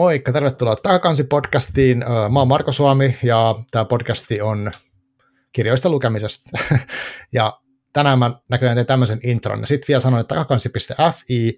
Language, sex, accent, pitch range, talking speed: Finnish, male, native, 110-135 Hz, 140 wpm